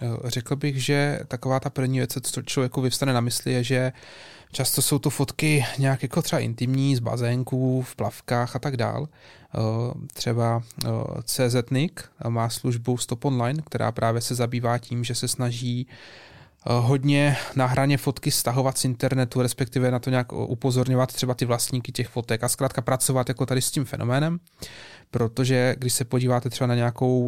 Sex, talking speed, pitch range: male, 165 wpm, 120-135 Hz